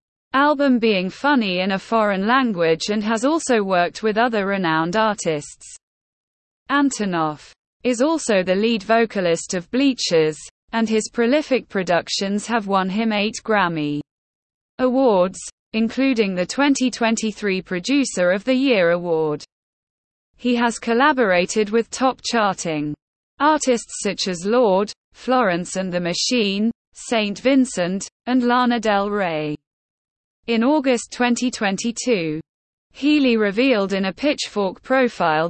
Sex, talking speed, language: female, 120 wpm, English